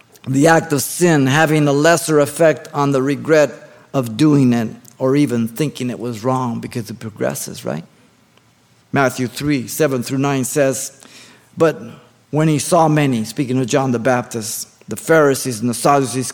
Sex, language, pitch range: male, English, 130-165 Hz